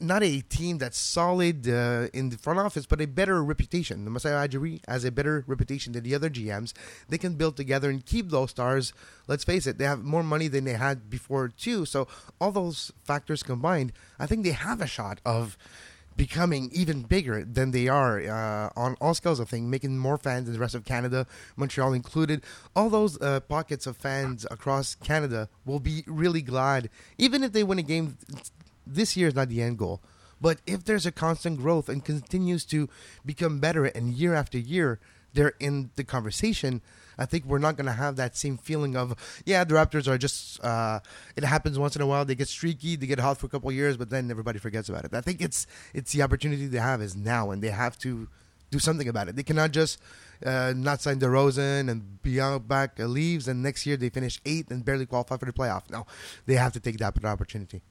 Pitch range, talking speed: 120-155 Hz, 220 wpm